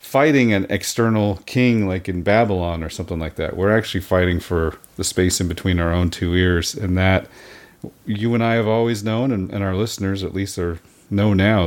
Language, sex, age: English, male, 40-59